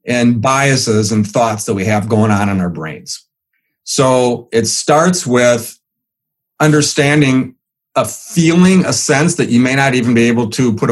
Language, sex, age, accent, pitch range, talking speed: English, male, 40-59, American, 115-155 Hz, 165 wpm